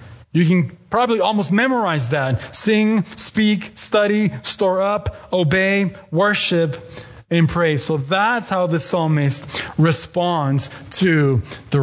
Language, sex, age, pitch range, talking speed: English, male, 30-49, 120-185 Hz, 115 wpm